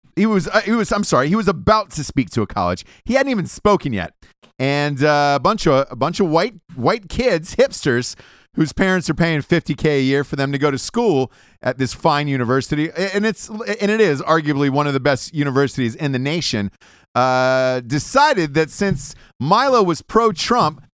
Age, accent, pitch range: 30-49, American, 140-200 Hz